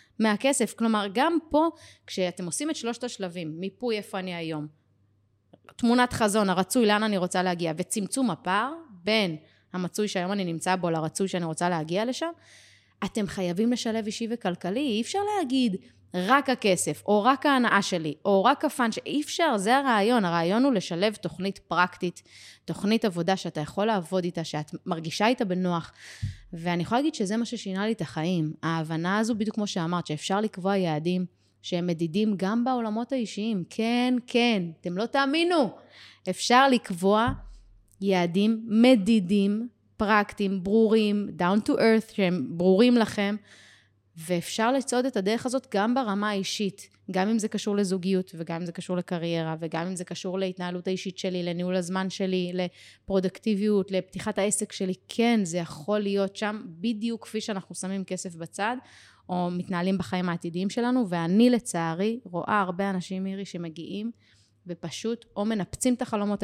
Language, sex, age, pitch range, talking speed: Hebrew, female, 20-39, 175-225 Hz, 150 wpm